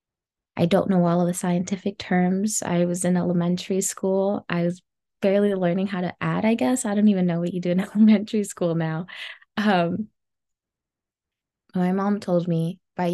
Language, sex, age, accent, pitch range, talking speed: English, female, 20-39, American, 175-210 Hz, 180 wpm